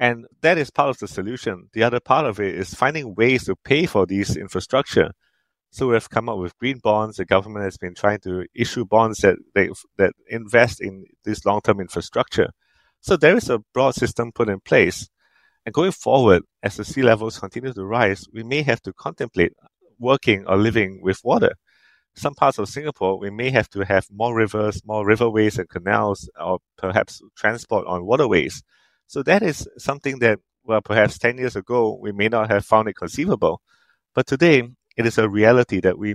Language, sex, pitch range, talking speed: English, male, 100-120 Hz, 195 wpm